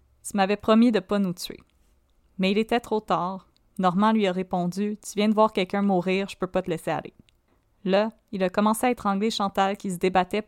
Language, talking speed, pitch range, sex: French, 210 wpm, 180-215 Hz, female